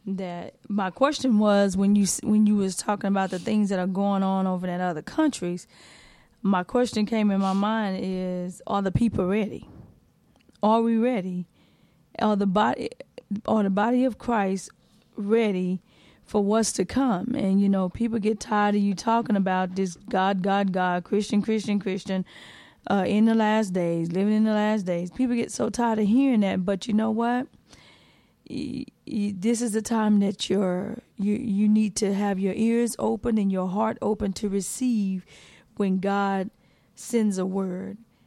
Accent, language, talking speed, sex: American, English, 175 wpm, female